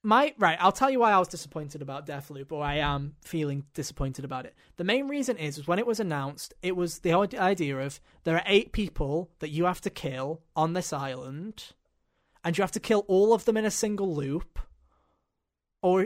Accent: British